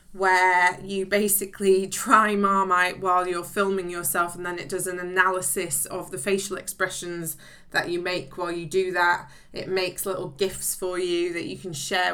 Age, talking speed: 20-39, 180 wpm